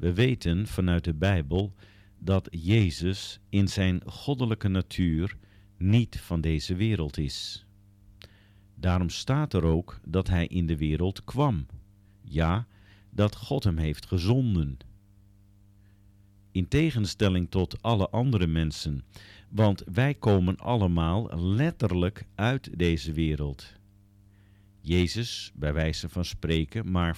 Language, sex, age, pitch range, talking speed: Dutch, male, 50-69, 90-105 Hz, 115 wpm